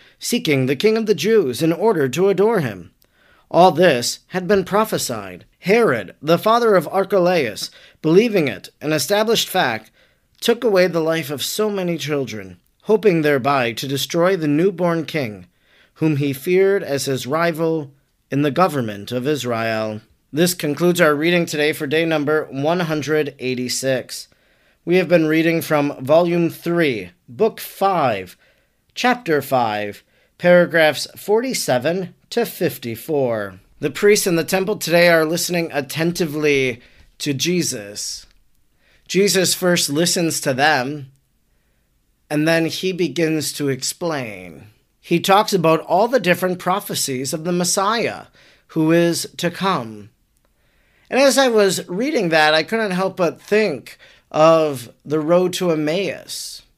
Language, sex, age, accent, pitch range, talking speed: English, male, 40-59, American, 140-180 Hz, 135 wpm